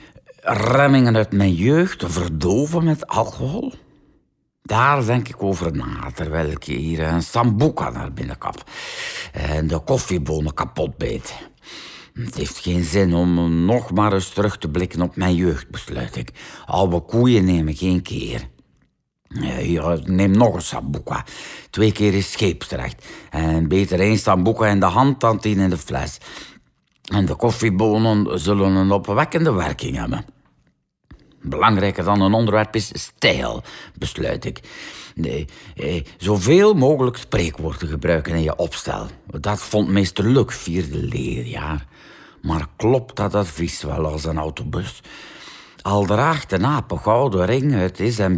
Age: 60-79